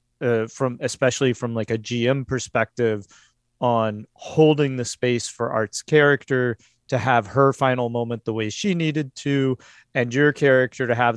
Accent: American